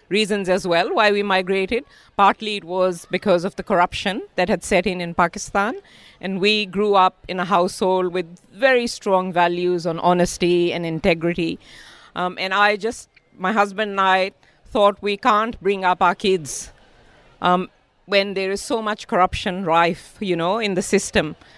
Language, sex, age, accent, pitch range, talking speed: English, female, 50-69, Indian, 175-205 Hz, 170 wpm